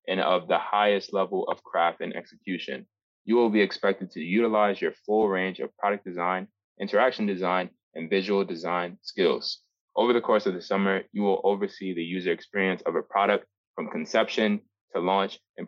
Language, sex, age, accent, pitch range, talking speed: English, male, 20-39, American, 95-110 Hz, 180 wpm